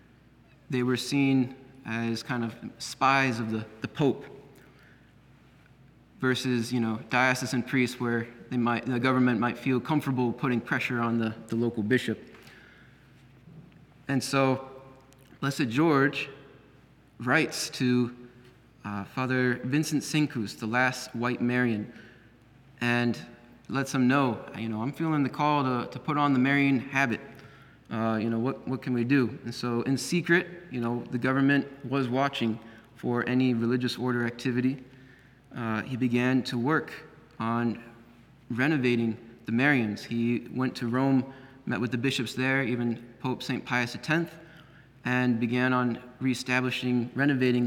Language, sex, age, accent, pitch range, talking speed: English, male, 30-49, American, 120-135 Hz, 135 wpm